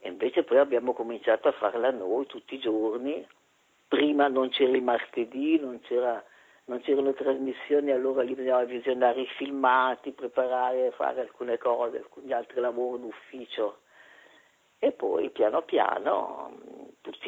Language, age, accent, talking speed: Italian, 50-69, native, 140 wpm